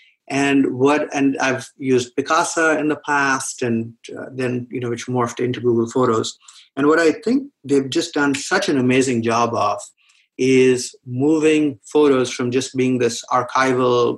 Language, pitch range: English, 120-140 Hz